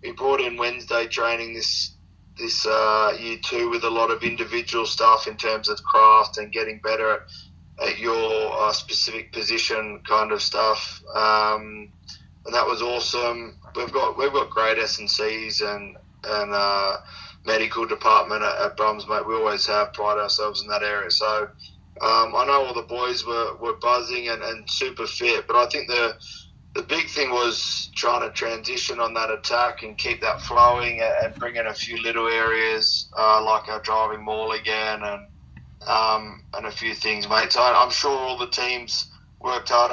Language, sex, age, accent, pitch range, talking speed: English, male, 20-39, Australian, 105-115 Hz, 185 wpm